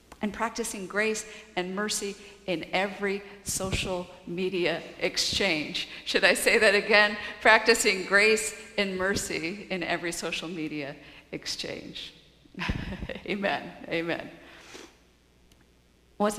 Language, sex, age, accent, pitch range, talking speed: English, female, 50-69, American, 175-205 Hz, 100 wpm